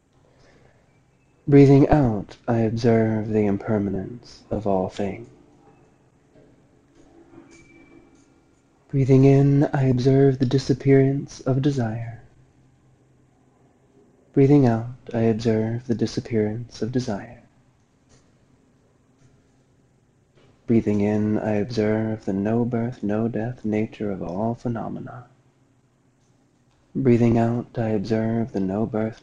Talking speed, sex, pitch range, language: 85 wpm, male, 110-135 Hz, English